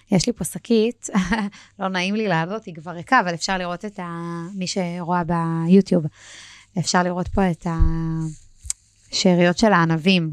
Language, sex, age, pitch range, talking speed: Hebrew, female, 20-39, 175-215 Hz, 145 wpm